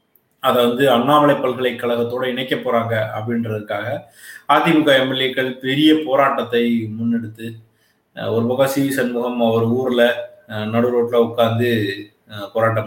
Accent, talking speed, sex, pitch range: native, 105 wpm, male, 115-130 Hz